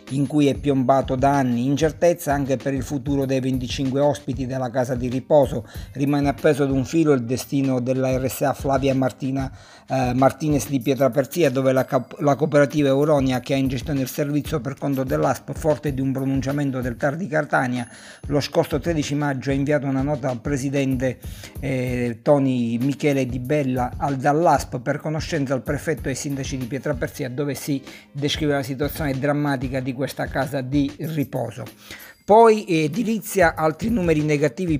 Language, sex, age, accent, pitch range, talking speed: Italian, male, 50-69, native, 130-150 Hz, 165 wpm